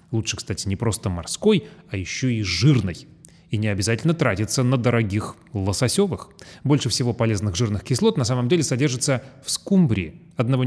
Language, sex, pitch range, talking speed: Russian, male, 110-155 Hz, 160 wpm